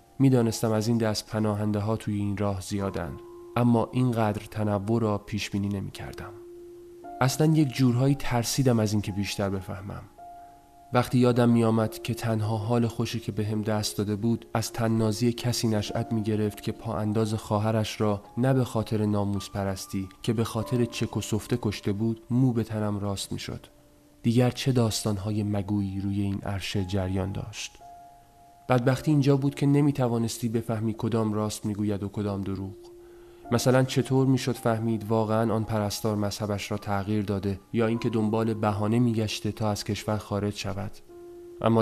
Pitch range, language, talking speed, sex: 105-120 Hz, Persian, 160 wpm, male